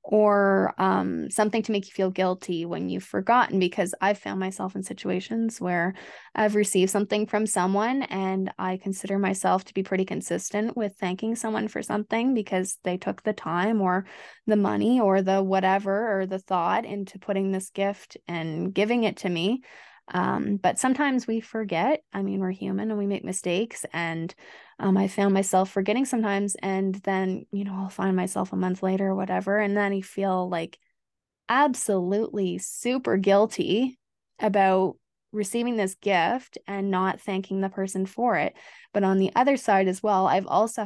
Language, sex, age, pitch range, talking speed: English, female, 20-39, 190-210 Hz, 175 wpm